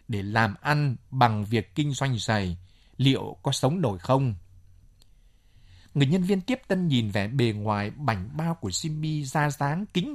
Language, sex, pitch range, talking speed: Vietnamese, male, 100-150 Hz, 170 wpm